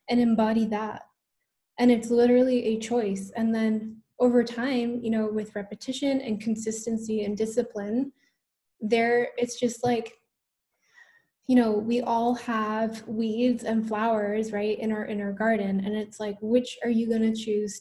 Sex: female